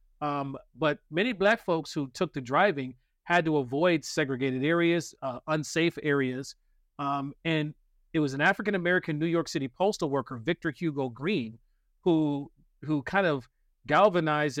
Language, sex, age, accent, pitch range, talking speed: English, male, 40-59, American, 135-170 Hz, 150 wpm